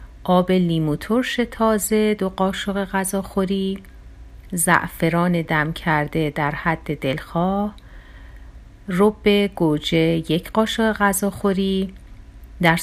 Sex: female